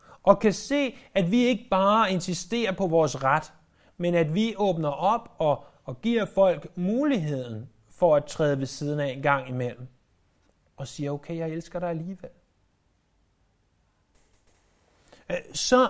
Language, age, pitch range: Danish, 30-49, 135-195 Hz